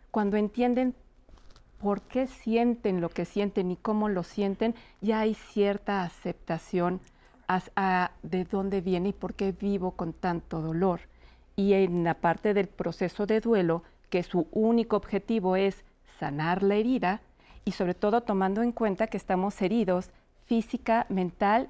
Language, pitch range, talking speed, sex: Spanish, 185-225 Hz, 150 wpm, female